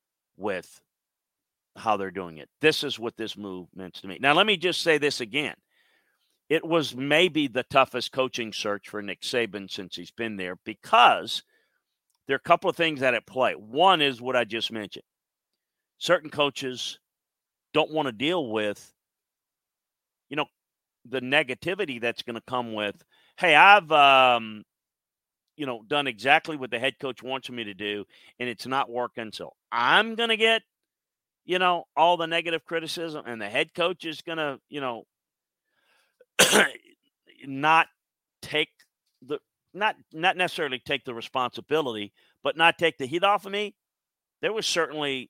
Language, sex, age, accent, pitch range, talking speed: English, male, 50-69, American, 110-160 Hz, 165 wpm